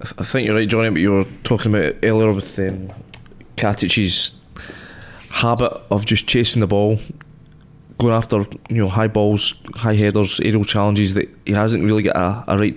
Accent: British